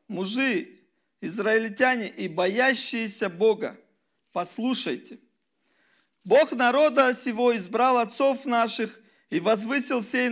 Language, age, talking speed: Russian, 40-59, 85 wpm